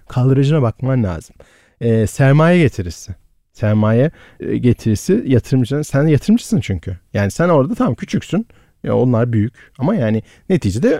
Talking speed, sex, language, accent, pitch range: 130 wpm, male, Turkish, native, 110-170 Hz